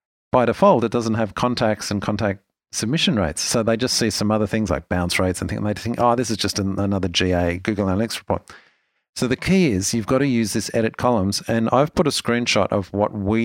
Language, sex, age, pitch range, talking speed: English, male, 50-69, 100-120 Hz, 240 wpm